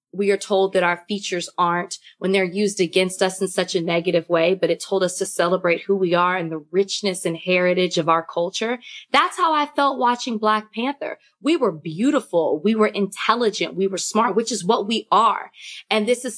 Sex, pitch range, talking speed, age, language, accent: female, 175-215 Hz, 215 wpm, 20-39, English, American